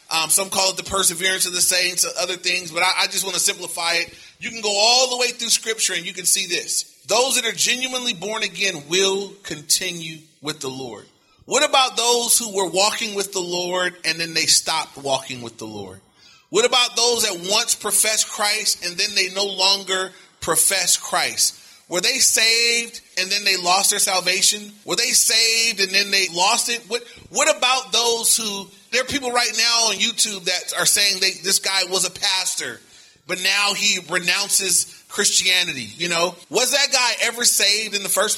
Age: 30-49